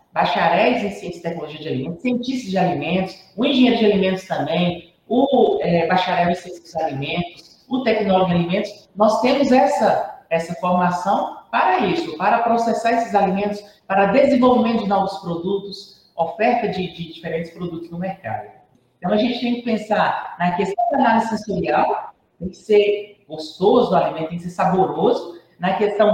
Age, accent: 40-59, Brazilian